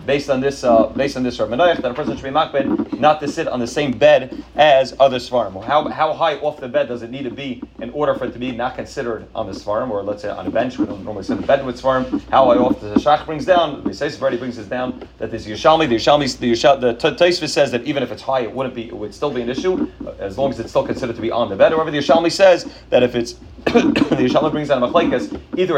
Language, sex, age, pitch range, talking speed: English, male, 30-49, 125-165 Hz, 290 wpm